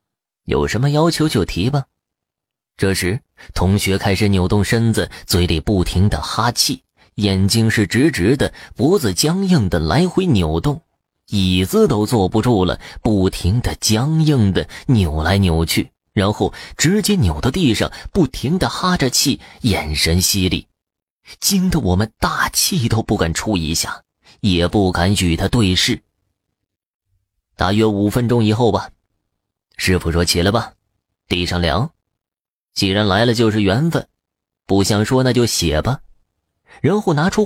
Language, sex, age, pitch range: Chinese, male, 20-39, 90-120 Hz